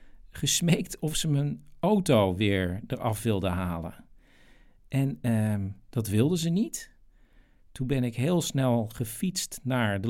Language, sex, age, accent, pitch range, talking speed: Dutch, male, 50-69, Dutch, 105-150 Hz, 135 wpm